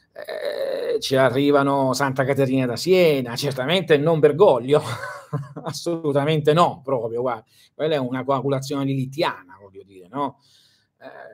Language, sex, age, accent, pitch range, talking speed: Italian, male, 40-59, native, 110-145 Hz, 115 wpm